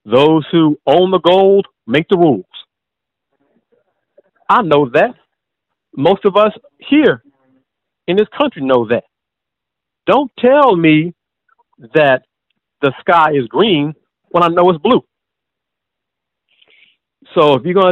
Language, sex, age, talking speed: English, male, 50-69, 125 wpm